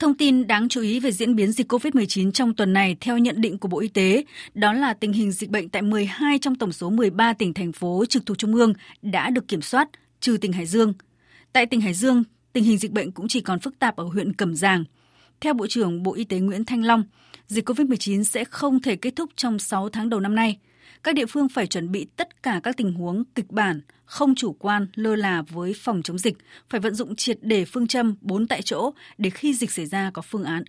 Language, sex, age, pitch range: Vietnamese, female, 20-39, 195-245 Hz